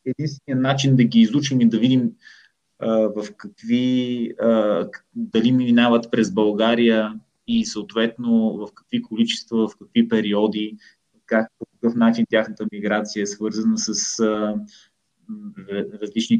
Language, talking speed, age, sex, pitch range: Bulgarian, 130 wpm, 20-39, male, 110-145 Hz